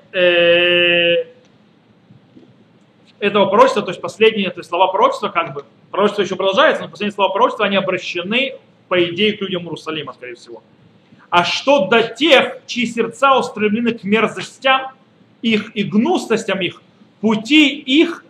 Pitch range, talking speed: 180-230 Hz, 130 wpm